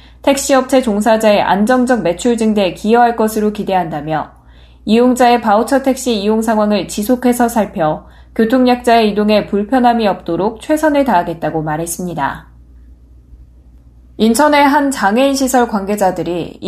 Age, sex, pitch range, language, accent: 10-29, female, 175-245 Hz, Korean, native